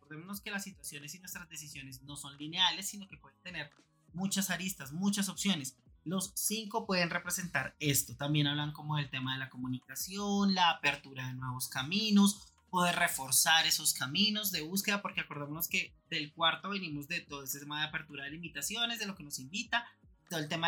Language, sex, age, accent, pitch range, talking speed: Spanish, male, 30-49, Colombian, 150-200 Hz, 185 wpm